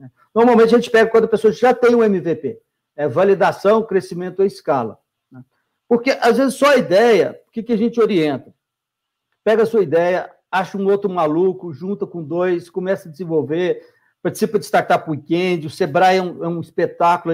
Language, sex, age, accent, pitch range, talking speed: Portuguese, male, 60-79, Brazilian, 160-215 Hz, 185 wpm